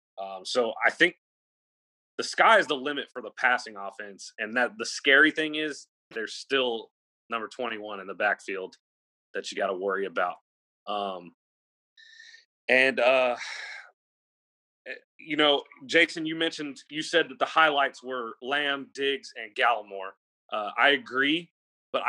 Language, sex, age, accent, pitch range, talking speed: English, male, 30-49, American, 105-150 Hz, 145 wpm